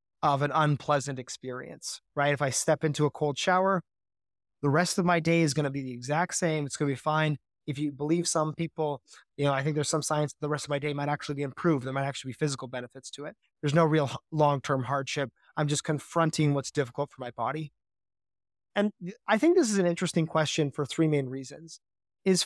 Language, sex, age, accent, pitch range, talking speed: English, male, 20-39, American, 140-170 Hz, 225 wpm